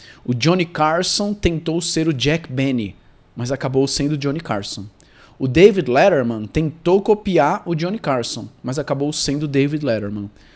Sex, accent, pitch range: male, Brazilian, 120-175 Hz